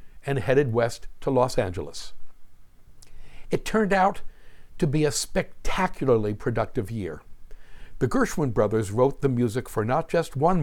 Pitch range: 110-150 Hz